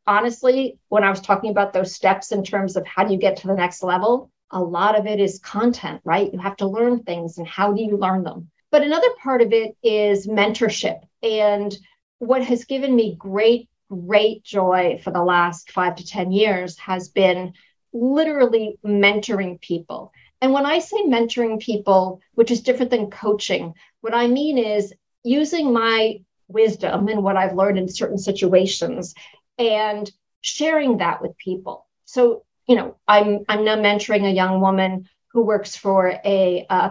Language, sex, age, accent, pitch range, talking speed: English, female, 50-69, American, 190-240 Hz, 175 wpm